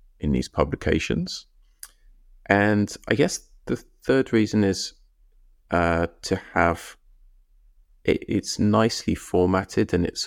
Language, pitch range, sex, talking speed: English, 80-100 Hz, male, 105 wpm